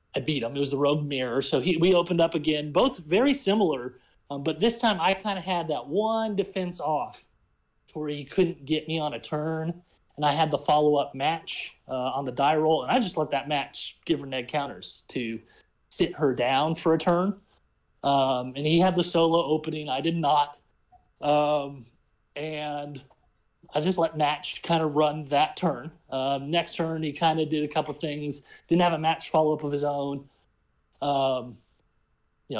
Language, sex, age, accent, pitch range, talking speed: English, male, 30-49, American, 145-165 Hz, 200 wpm